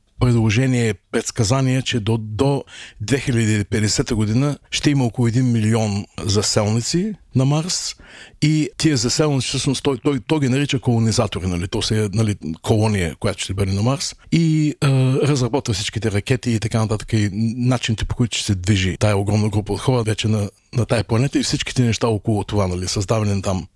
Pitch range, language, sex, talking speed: 110-130 Hz, Bulgarian, male, 175 wpm